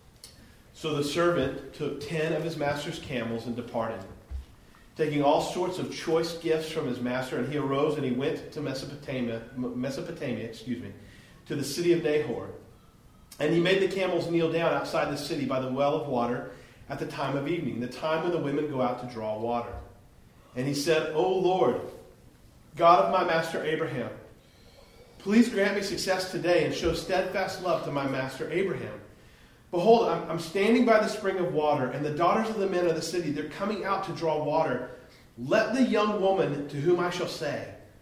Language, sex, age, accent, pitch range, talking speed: English, male, 40-59, American, 120-170 Hz, 190 wpm